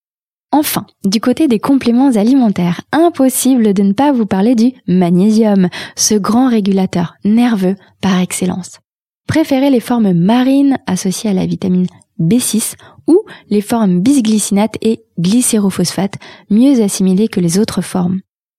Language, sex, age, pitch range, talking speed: French, female, 20-39, 190-240 Hz, 130 wpm